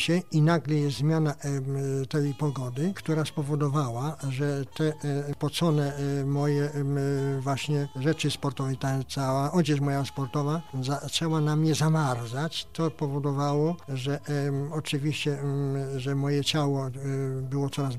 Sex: male